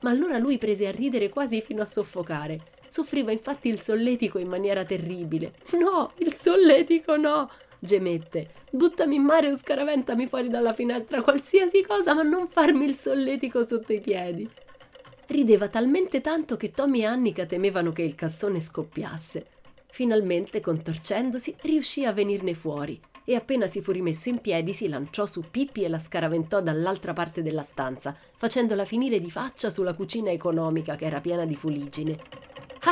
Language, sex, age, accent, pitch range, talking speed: Italian, female, 30-49, native, 170-275 Hz, 160 wpm